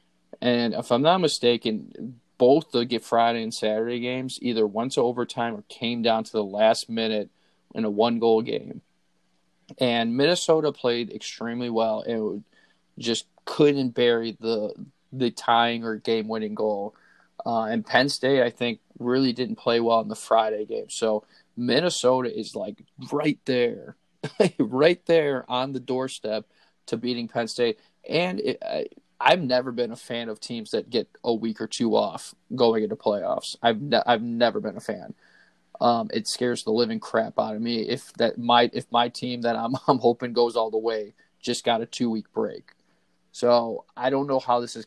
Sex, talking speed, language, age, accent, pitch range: male, 180 wpm, English, 20-39, American, 110-125 Hz